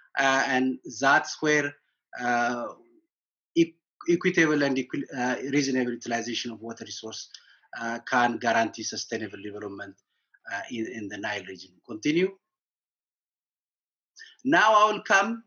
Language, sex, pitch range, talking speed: English, male, 130-180 Hz, 115 wpm